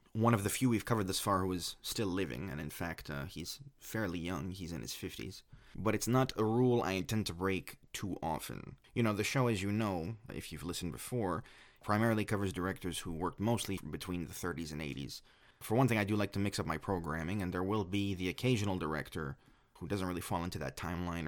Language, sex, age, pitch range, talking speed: English, male, 30-49, 85-105 Hz, 230 wpm